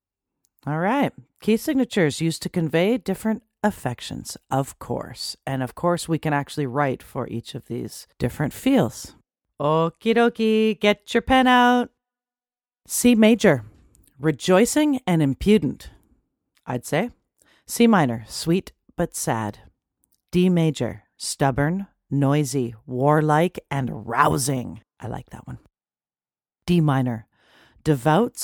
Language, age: English, 40-59